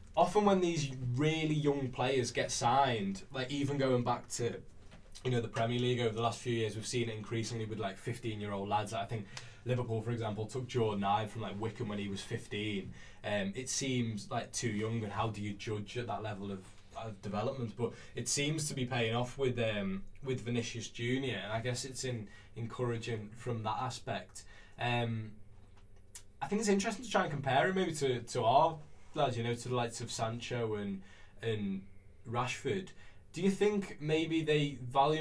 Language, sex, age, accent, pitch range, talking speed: English, male, 20-39, British, 110-135 Hz, 200 wpm